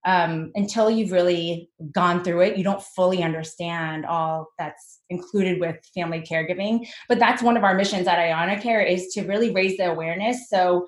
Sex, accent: female, American